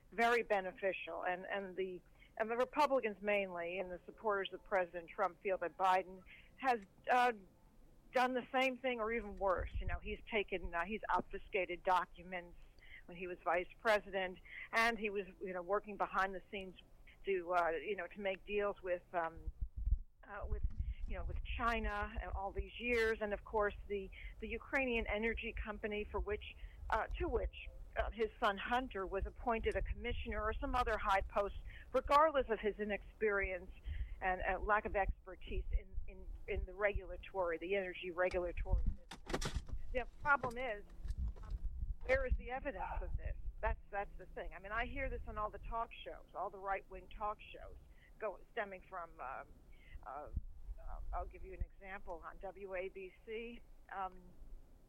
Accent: American